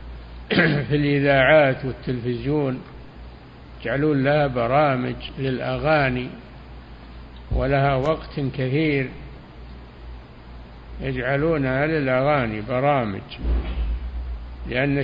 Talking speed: 55 wpm